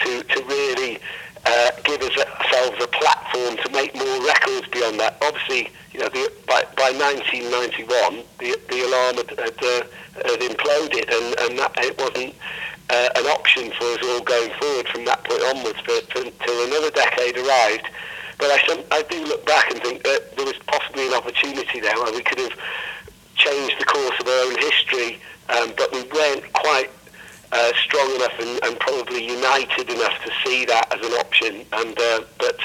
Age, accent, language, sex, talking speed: 50-69, British, Swedish, male, 185 wpm